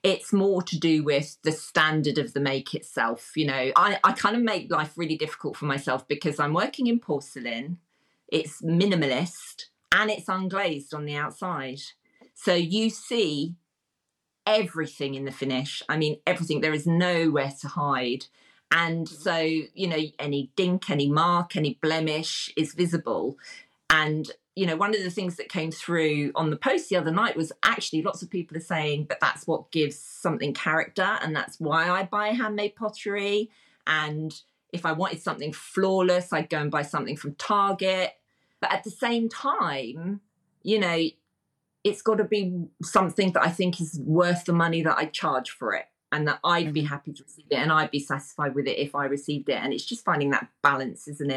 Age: 40-59